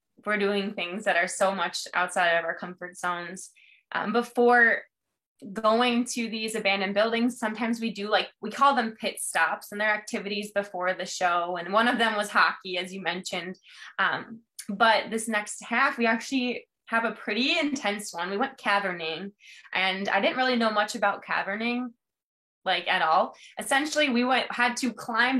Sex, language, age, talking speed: female, English, 20-39, 175 wpm